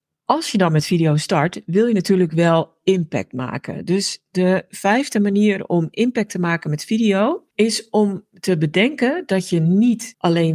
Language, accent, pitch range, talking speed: Dutch, Dutch, 160-215 Hz, 170 wpm